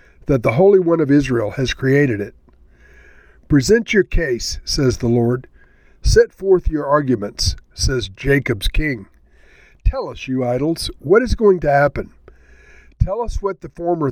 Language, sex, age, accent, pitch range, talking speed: English, male, 50-69, American, 120-175 Hz, 155 wpm